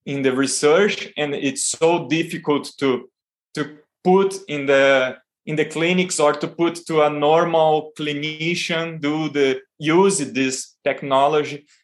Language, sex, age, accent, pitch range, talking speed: English, male, 20-39, Brazilian, 135-160 Hz, 135 wpm